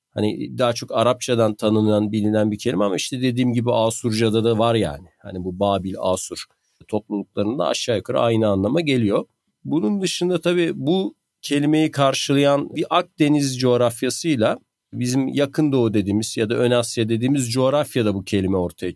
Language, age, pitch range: Turkish, 50-69, 110-145 Hz